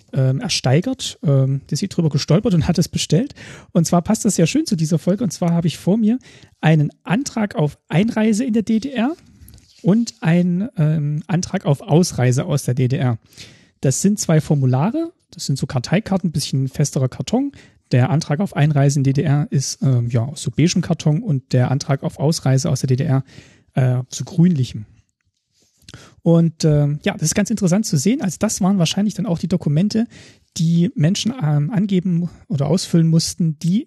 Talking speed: 175 wpm